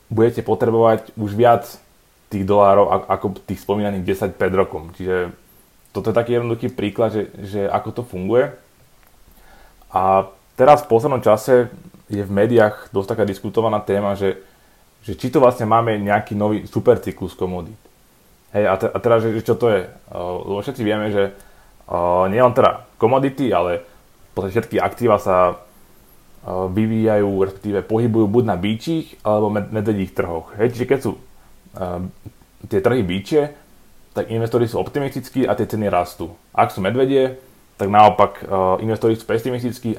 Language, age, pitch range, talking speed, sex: Slovak, 20-39, 95-115 Hz, 145 wpm, male